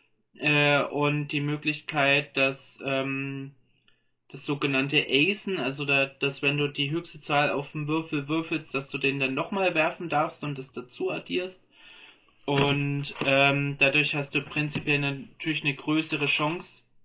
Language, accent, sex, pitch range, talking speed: German, German, male, 135-150 Hz, 150 wpm